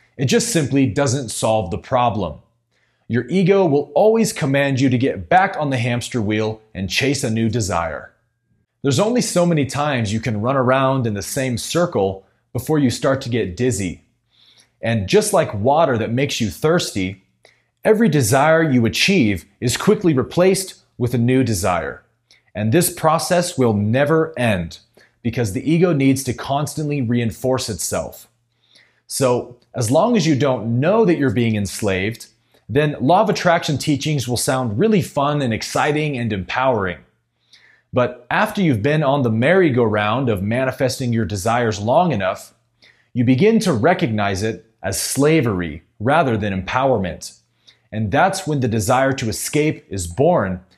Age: 30-49